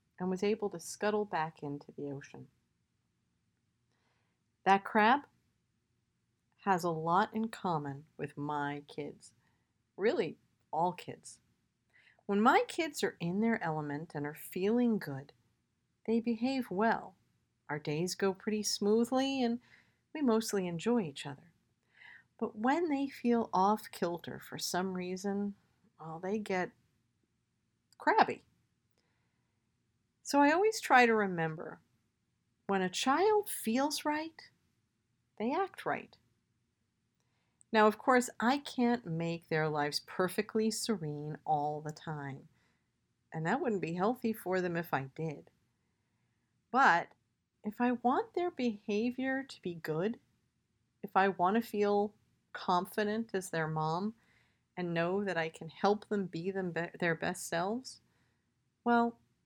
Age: 50-69